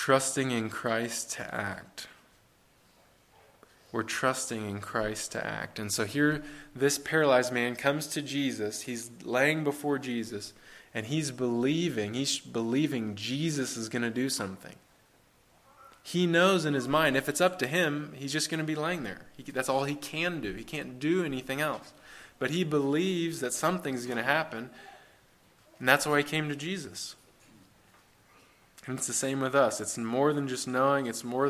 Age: 20-39